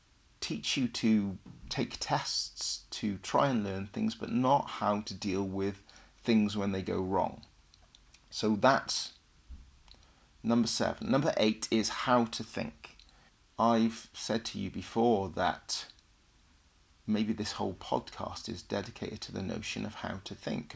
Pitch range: 100-120 Hz